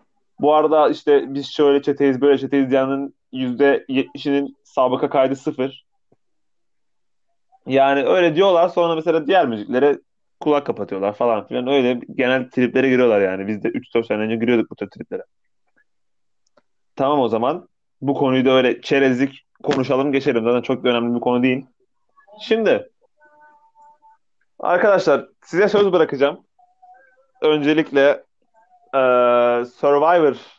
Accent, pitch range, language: native, 125-170 Hz, Turkish